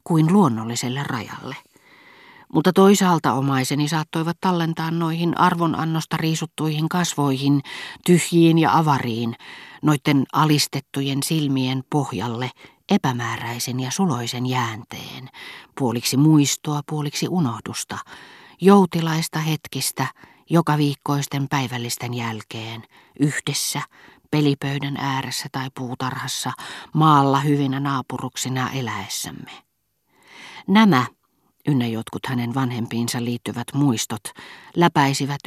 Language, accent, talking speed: Finnish, native, 85 wpm